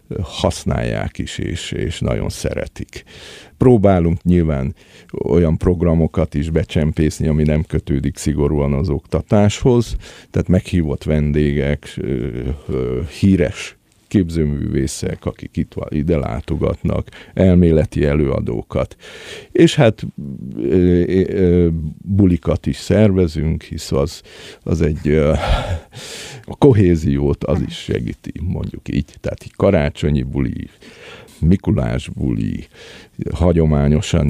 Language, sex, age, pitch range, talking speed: Hungarian, male, 50-69, 70-90 Hz, 90 wpm